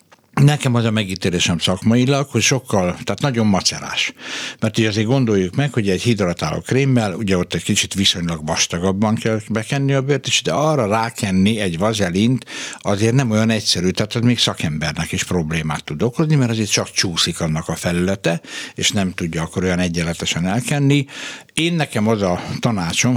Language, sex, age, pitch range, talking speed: Hungarian, male, 60-79, 90-120 Hz, 170 wpm